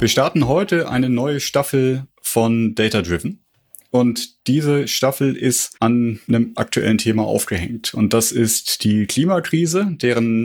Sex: male